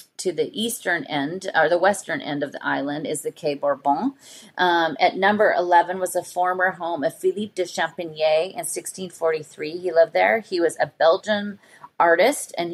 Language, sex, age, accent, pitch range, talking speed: English, female, 30-49, American, 150-185 Hz, 180 wpm